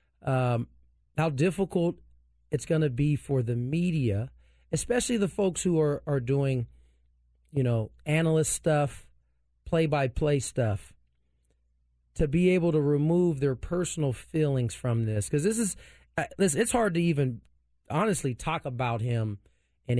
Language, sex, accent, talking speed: English, male, American, 140 wpm